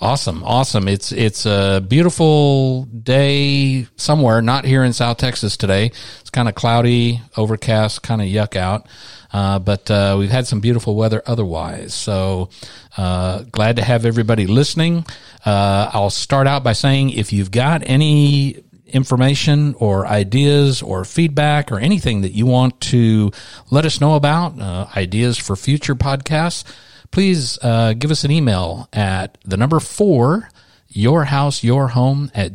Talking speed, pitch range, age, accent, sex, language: 155 wpm, 110-140 Hz, 50-69, American, male, English